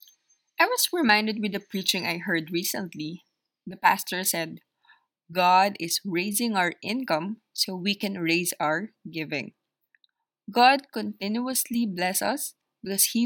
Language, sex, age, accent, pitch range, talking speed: English, female, 20-39, Filipino, 175-245 Hz, 130 wpm